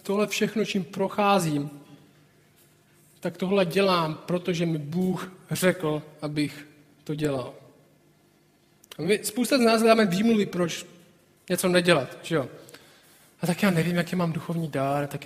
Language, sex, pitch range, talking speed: Czech, male, 145-175 Hz, 135 wpm